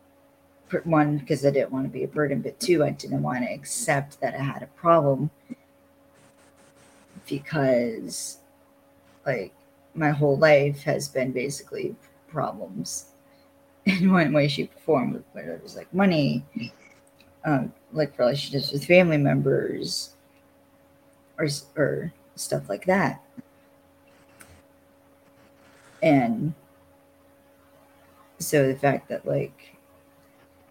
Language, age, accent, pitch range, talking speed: English, 40-59, American, 120-150 Hz, 115 wpm